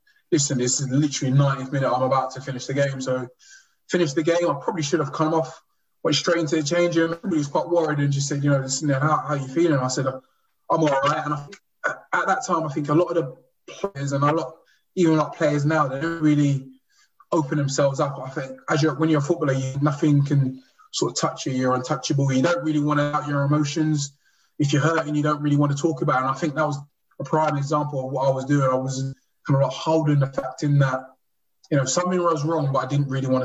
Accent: British